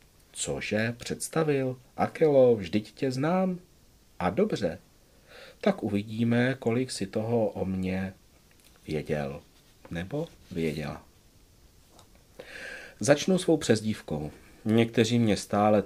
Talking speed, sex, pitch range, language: 90 wpm, male, 95-120 Hz, Czech